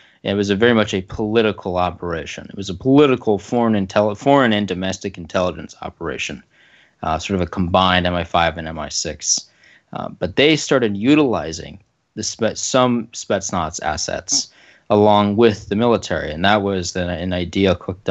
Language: English